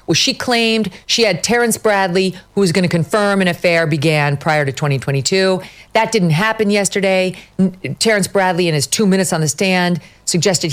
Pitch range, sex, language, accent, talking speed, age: 145-195 Hz, female, English, American, 180 wpm, 40-59